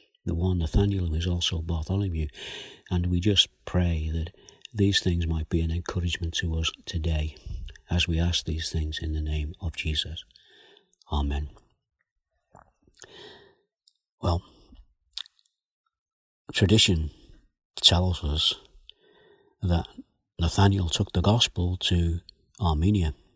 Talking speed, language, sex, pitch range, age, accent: 110 wpm, English, male, 80-105 Hz, 60-79, British